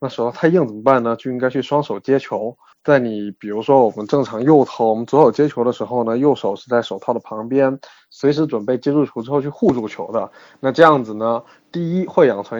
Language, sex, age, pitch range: Chinese, male, 20-39, 115-150 Hz